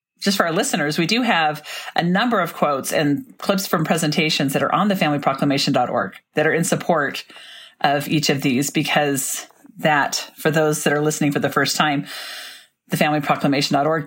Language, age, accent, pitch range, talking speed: English, 40-59, American, 145-190 Hz, 175 wpm